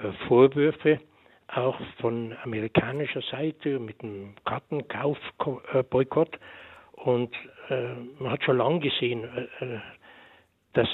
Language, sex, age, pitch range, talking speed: German, male, 60-79, 120-150 Hz, 80 wpm